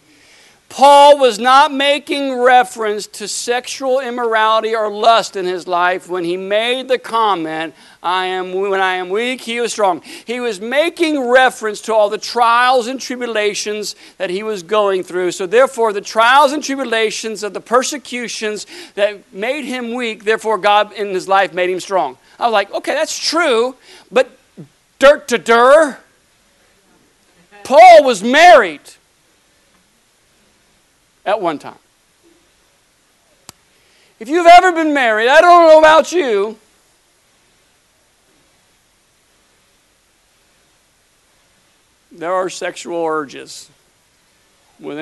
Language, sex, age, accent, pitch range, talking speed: English, male, 50-69, American, 200-290 Hz, 125 wpm